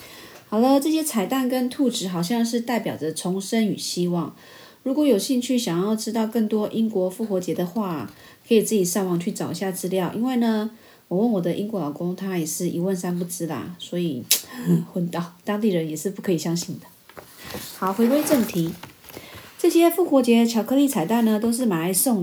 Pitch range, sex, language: 175-220 Hz, female, Chinese